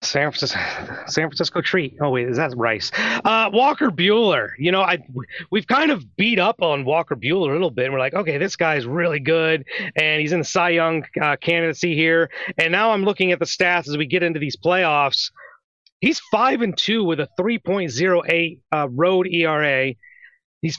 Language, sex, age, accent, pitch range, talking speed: English, male, 30-49, American, 150-185 Hz, 195 wpm